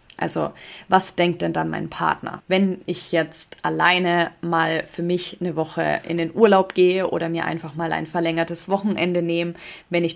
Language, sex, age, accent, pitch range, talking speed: German, female, 20-39, German, 170-195 Hz, 175 wpm